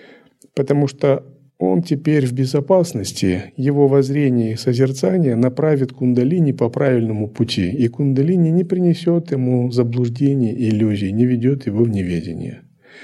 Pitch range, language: 115-155 Hz, Russian